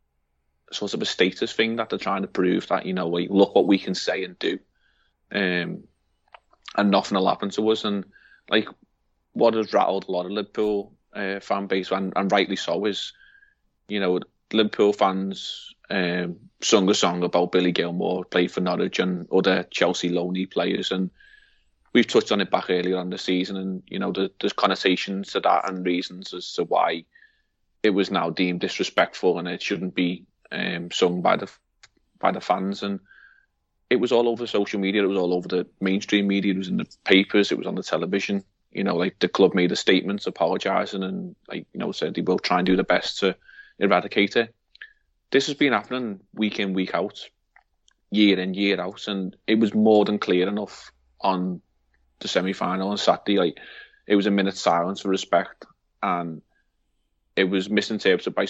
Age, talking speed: 30-49, 195 wpm